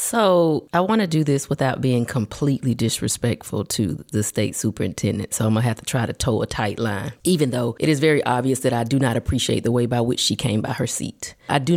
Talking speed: 245 wpm